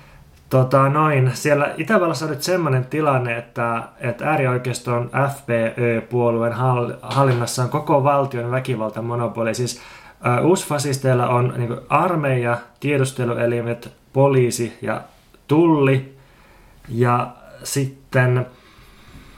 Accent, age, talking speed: native, 20-39, 95 wpm